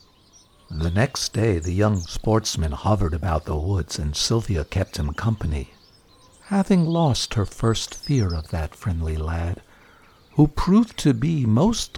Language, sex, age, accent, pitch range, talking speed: English, male, 60-79, American, 95-150 Hz, 145 wpm